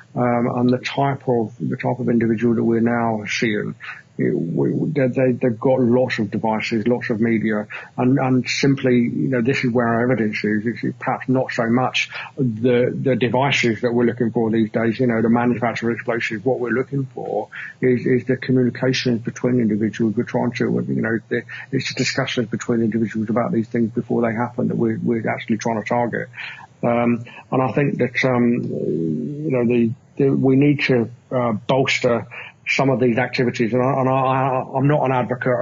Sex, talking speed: male, 195 wpm